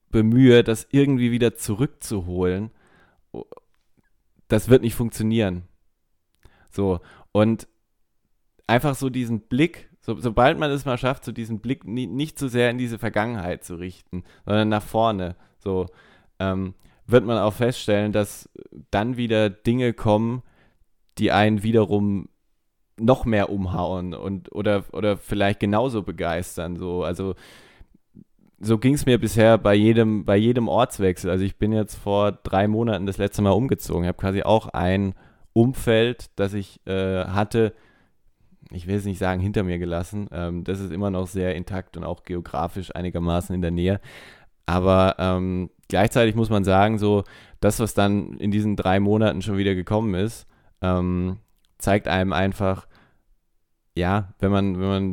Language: German